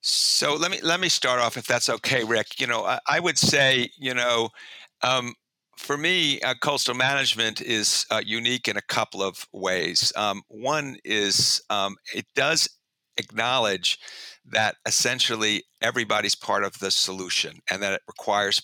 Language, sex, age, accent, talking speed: English, male, 50-69, American, 165 wpm